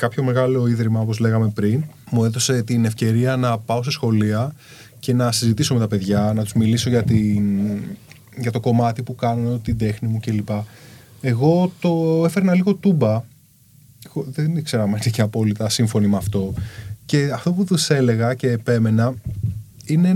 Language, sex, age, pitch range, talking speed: Greek, male, 20-39, 115-160 Hz, 160 wpm